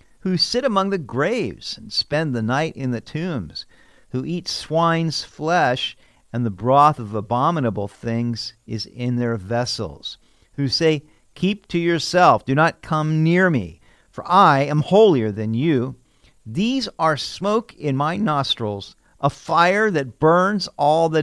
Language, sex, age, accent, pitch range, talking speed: English, male, 50-69, American, 120-170 Hz, 155 wpm